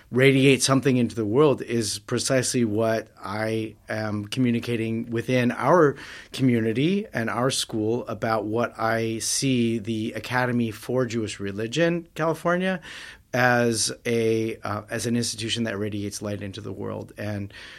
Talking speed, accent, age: 135 wpm, American, 30-49